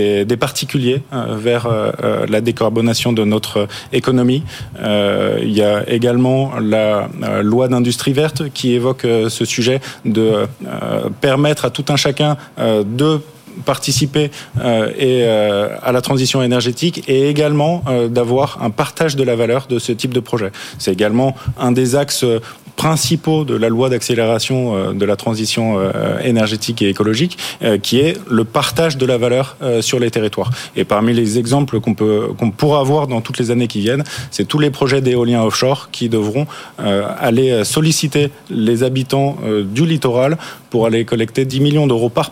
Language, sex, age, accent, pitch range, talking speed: French, male, 20-39, French, 115-140 Hz, 150 wpm